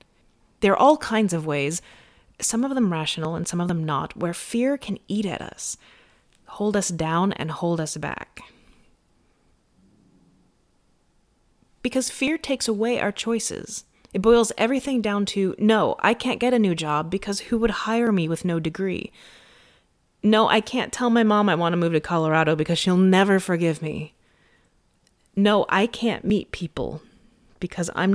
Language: English